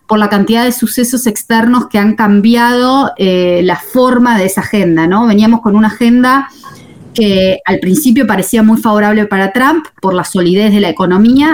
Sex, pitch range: female, 190-240 Hz